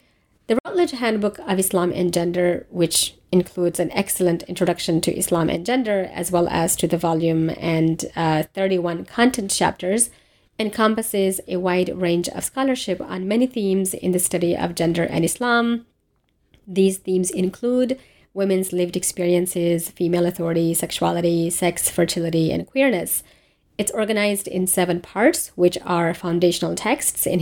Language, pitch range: English, 175-210 Hz